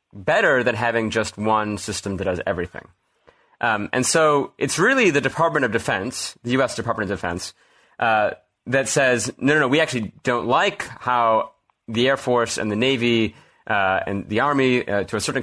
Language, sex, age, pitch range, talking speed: English, male, 30-49, 105-125 Hz, 185 wpm